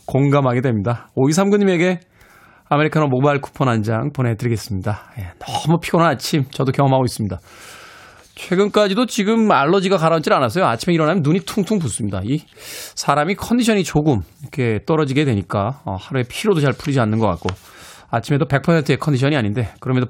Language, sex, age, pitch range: Korean, male, 20-39, 120-165 Hz